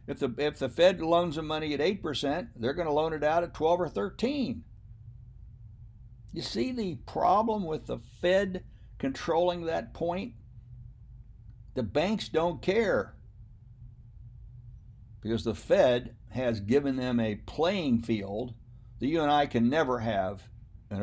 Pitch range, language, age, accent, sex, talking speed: 110-135 Hz, English, 60-79, American, male, 145 wpm